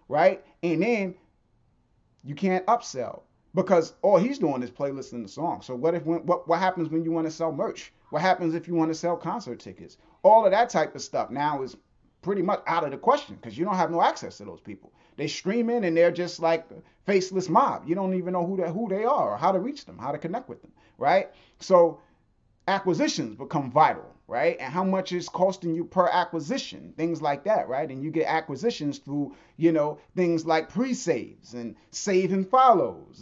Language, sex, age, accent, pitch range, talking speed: English, male, 30-49, American, 140-185 Hz, 215 wpm